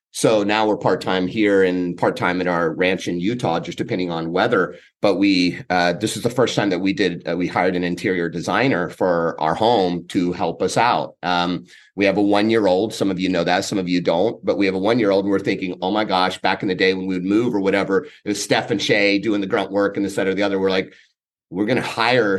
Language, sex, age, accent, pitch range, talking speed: English, male, 30-49, American, 90-110 Hz, 275 wpm